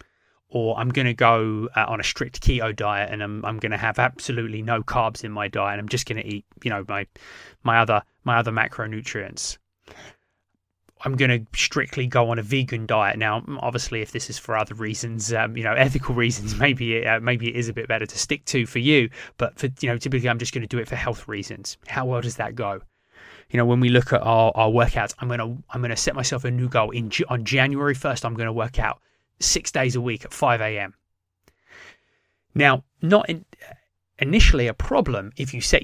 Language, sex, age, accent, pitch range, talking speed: English, male, 20-39, British, 110-125 Hz, 225 wpm